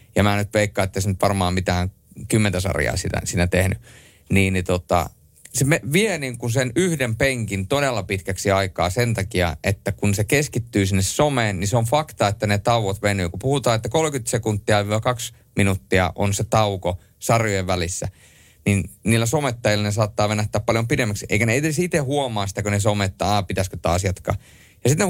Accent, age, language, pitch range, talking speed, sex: native, 30-49, Finnish, 95-125 Hz, 190 wpm, male